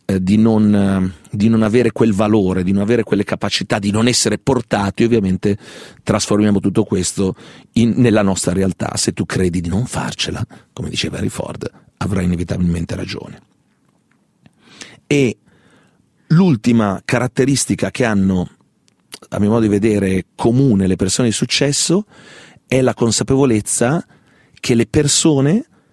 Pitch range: 100-130 Hz